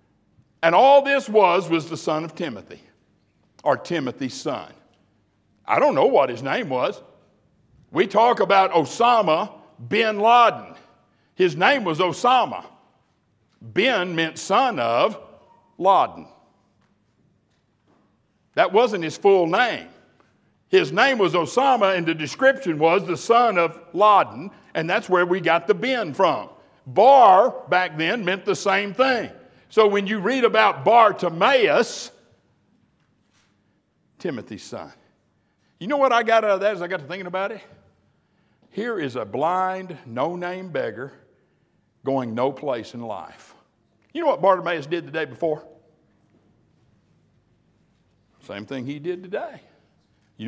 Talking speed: 135 wpm